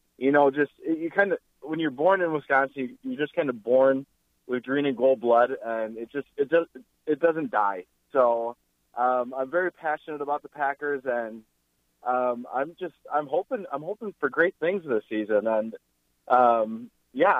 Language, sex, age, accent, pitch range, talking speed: English, male, 20-39, American, 115-150 Hz, 185 wpm